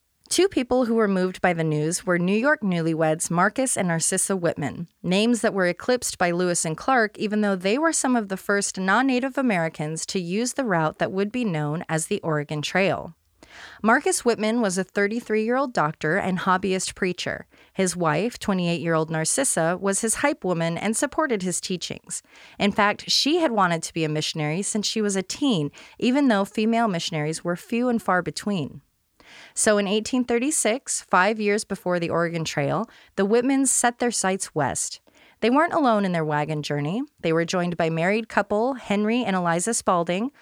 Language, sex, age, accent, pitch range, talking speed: English, female, 30-49, American, 170-225 Hz, 180 wpm